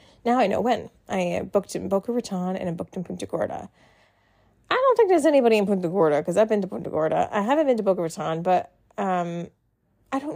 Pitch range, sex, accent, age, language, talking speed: 170-215 Hz, female, American, 30-49, English, 225 wpm